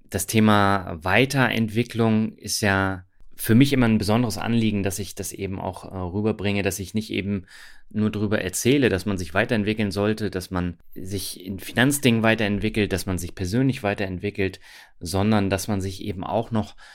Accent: German